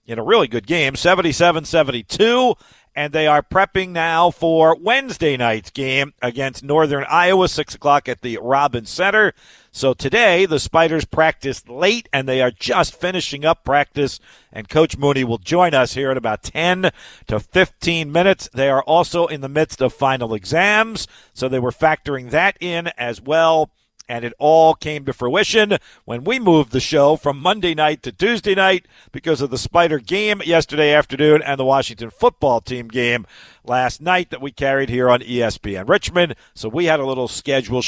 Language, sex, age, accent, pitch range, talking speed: English, male, 50-69, American, 130-175 Hz, 175 wpm